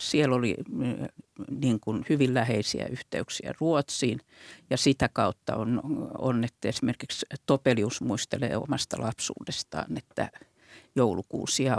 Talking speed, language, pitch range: 105 wpm, Finnish, 120-140 Hz